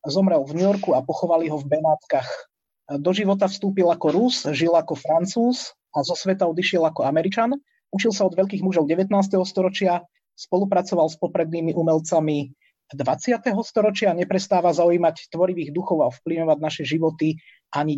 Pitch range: 160-195 Hz